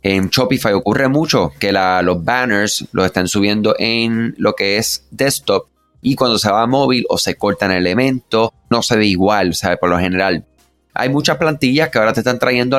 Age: 30-49